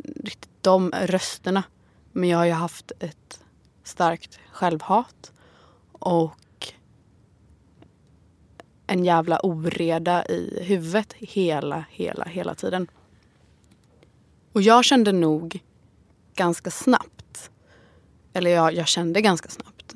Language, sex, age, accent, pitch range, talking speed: English, female, 20-39, Swedish, 155-190 Hz, 100 wpm